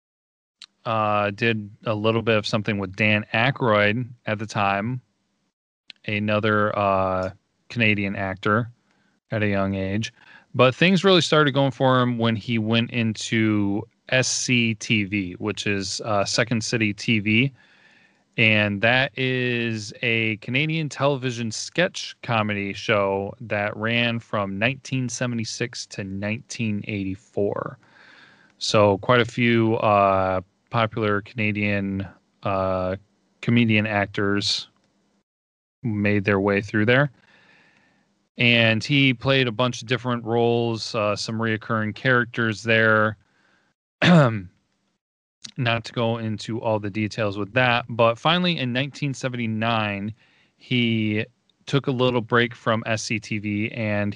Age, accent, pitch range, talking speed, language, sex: 30-49, American, 105-120 Hz, 115 wpm, English, male